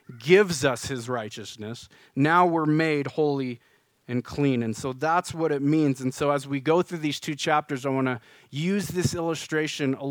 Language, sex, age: English, male, 30-49